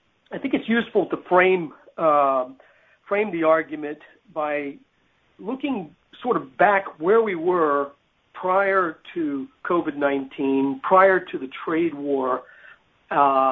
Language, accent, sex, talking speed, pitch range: English, American, male, 120 wpm, 145-195 Hz